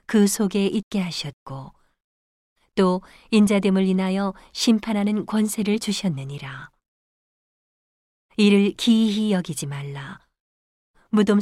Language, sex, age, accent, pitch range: Korean, female, 40-59, native, 155-205 Hz